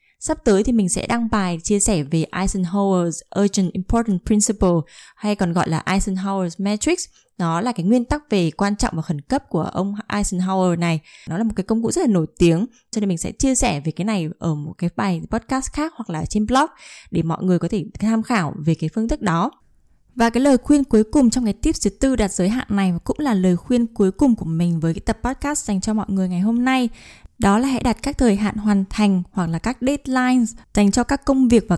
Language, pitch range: Vietnamese, 185-245 Hz